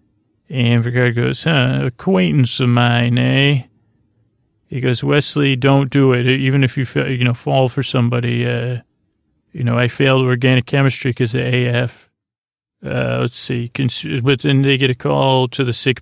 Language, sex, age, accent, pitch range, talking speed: English, male, 30-49, American, 120-135 Hz, 170 wpm